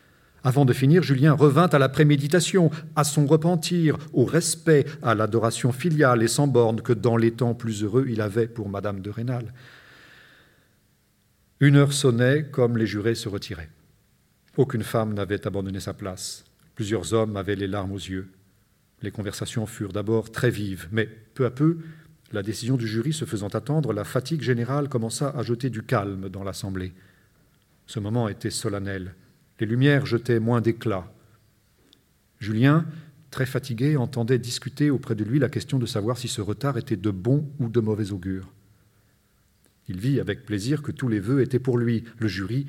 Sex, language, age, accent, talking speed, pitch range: male, French, 50-69, French, 175 wpm, 105-130 Hz